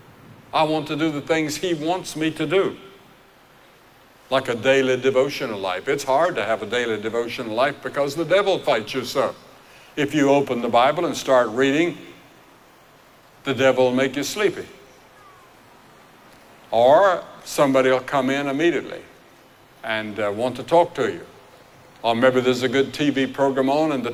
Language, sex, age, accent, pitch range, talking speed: English, male, 60-79, American, 130-150 Hz, 165 wpm